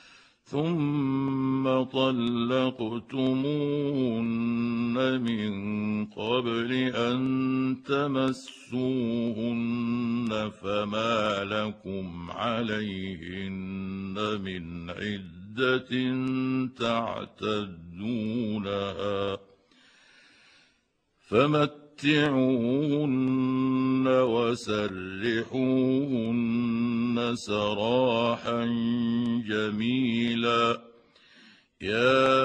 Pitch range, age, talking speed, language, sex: 105-130 Hz, 60-79, 30 wpm, Arabic, male